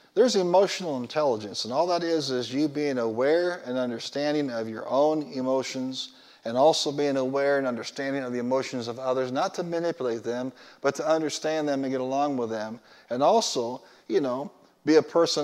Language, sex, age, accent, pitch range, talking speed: English, male, 40-59, American, 125-155 Hz, 185 wpm